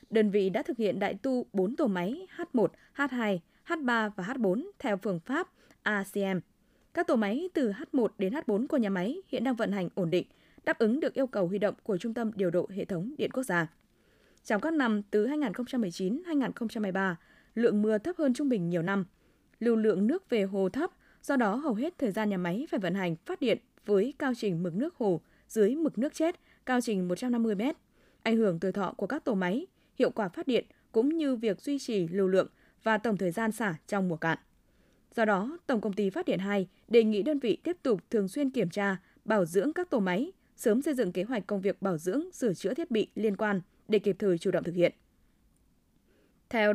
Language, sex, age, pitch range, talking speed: Vietnamese, female, 20-39, 195-265 Hz, 220 wpm